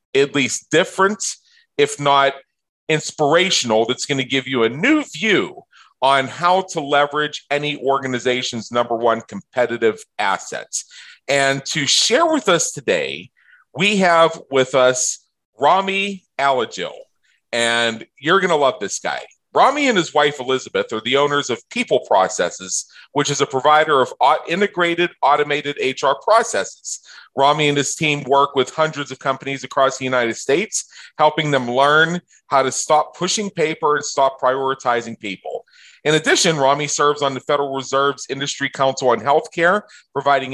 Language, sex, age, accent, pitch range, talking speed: English, male, 40-59, American, 130-160 Hz, 150 wpm